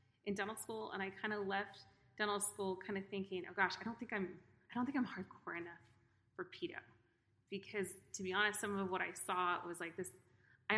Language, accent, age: English, American, 30-49